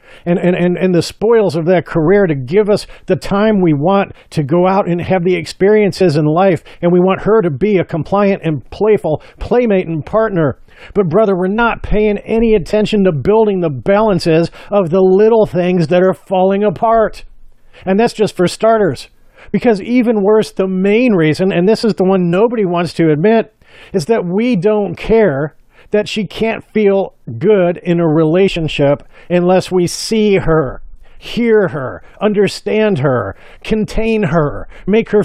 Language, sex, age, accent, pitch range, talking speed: English, male, 50-69, American, 175-215 Hz, 175 wpm